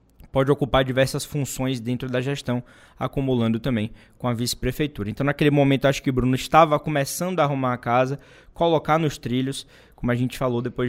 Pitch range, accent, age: 125-150 Hz, Brazilian, 20-39